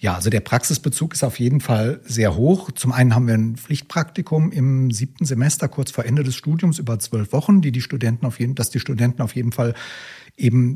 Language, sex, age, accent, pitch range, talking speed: German, male, 60-79, German, 115-145 Hz, 220 wpm